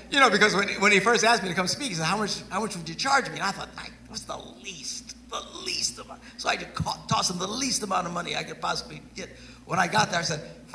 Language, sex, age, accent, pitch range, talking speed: English, male, 50-69, American, 145-230 Hz, 305 wpm